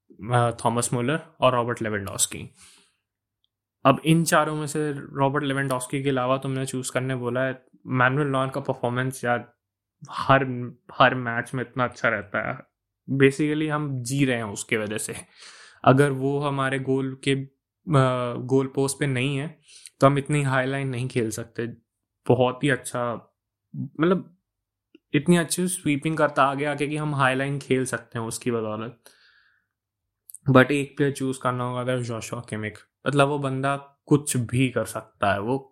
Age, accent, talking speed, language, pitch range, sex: 20-39, native, 155 wpm, Hindi, 115-135 Hz, male